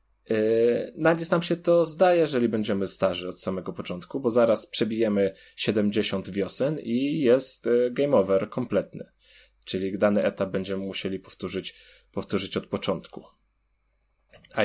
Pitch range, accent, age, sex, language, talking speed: 100-115 Hz, native, 20-39, male, Polish, 135 wpm